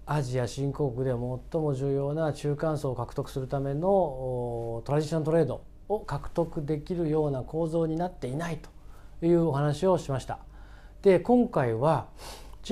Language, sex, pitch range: Japanese, male, 120-180 Hz